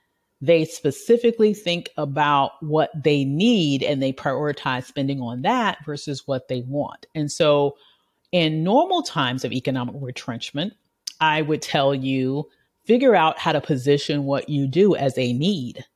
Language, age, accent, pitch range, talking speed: English, 40-59, American, 145-225 Hz, 150 wpm